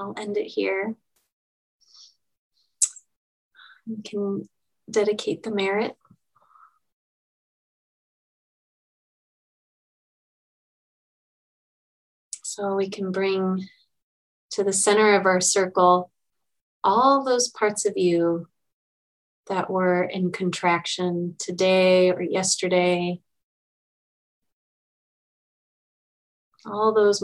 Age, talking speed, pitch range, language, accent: 20-39, 75 wpm, 180-205 Hz, English, American